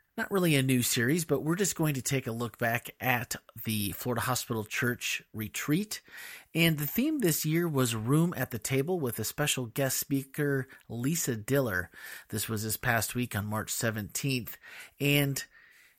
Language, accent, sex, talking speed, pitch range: English, American, male, 175 wpm, 115-145 Hz